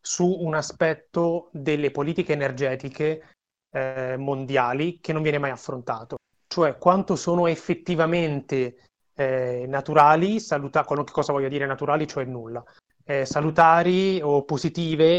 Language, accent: Italian, native